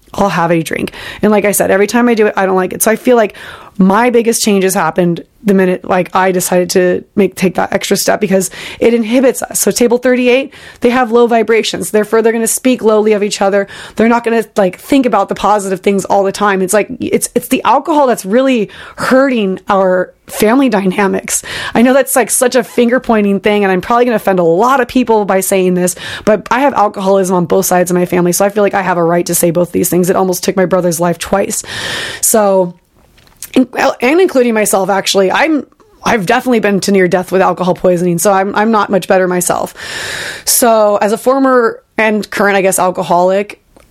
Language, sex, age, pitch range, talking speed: English, female, 20-39, 185-235 Hz, 220 wpm